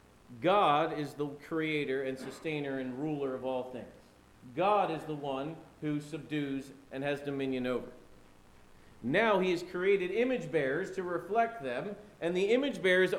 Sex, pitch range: male, 140-195 Hz